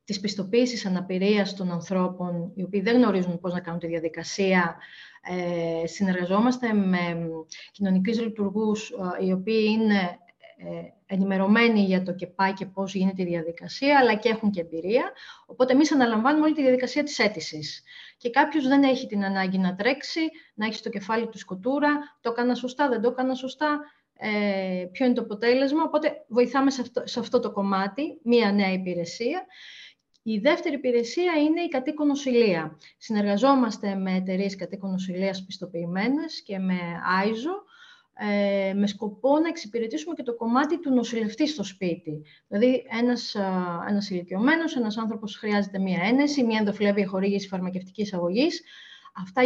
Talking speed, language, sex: 150 wpm, Greek, female